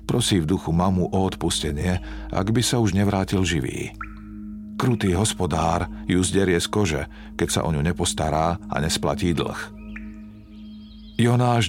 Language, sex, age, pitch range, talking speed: Slovak, male, 50-69, 85-110 Hz, 140 wpm